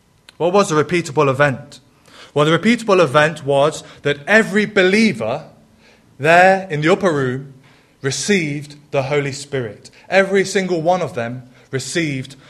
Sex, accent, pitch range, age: male, British, 135-175 Hz, 20-39